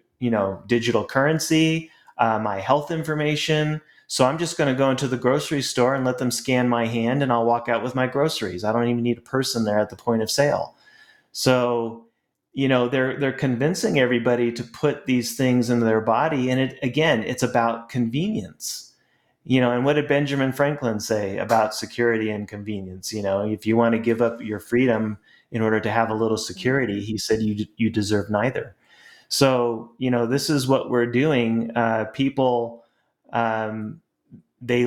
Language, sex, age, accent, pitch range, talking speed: English, male, 30-49, American, 110-135 Hz, 190 wpm